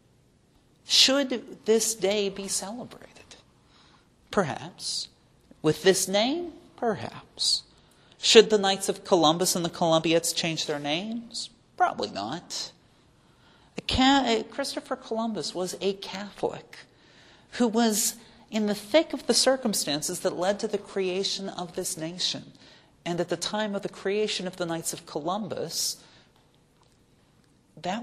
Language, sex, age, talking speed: English, male, 40-59, 120 wpm